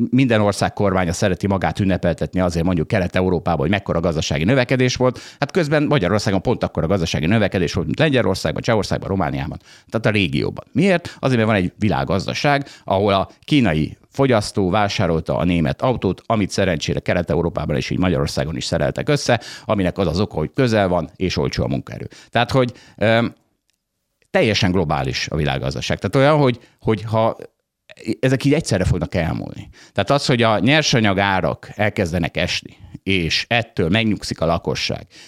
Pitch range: 95-130 Hz